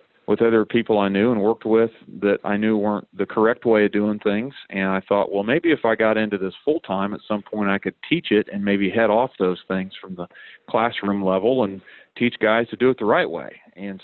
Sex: male